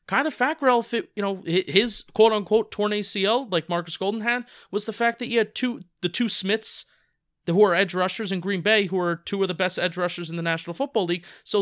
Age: 30-49